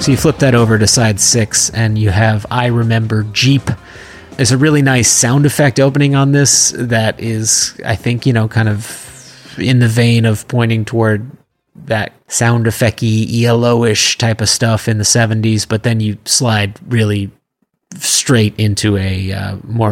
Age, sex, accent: 30-49, male, American